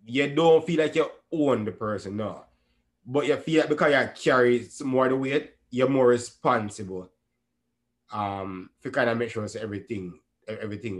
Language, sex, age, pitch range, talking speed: English, male, 20-39, 100-130 Hz, 170 wpm